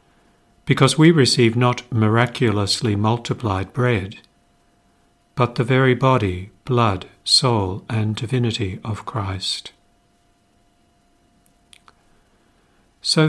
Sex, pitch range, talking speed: male, 100-130 Hz, 80 wpm